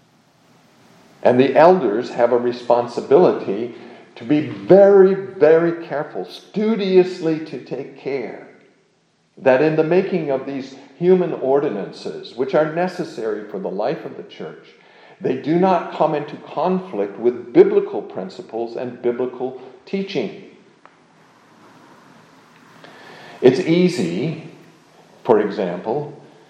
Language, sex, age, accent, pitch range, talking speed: English, male, 50-69, American, 120-170 Hz, 110 wpm